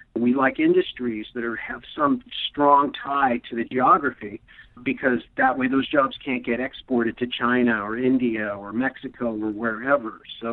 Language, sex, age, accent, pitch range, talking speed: English, male, 50-69, American, 120-140 Hz, 160 wpm